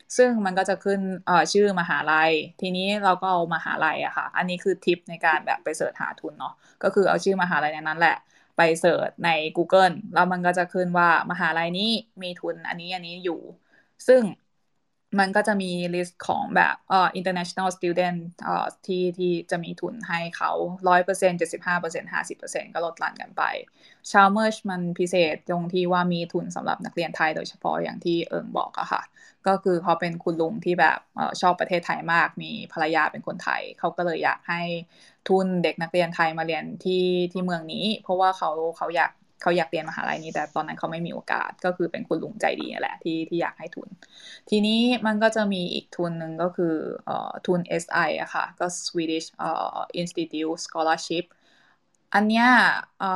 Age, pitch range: 20-39, 170-195 Hz